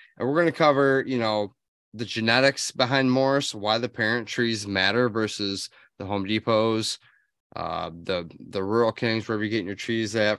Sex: male